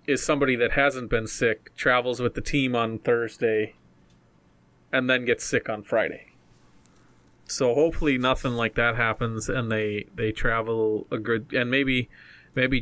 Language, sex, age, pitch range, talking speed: English, male, 20-39, 110-130 Hz, 155 wpm